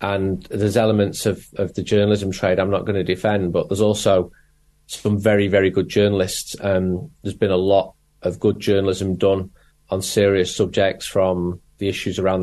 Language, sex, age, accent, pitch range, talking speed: English, male, 30-49, British, 95-115 Hz, 180 wpm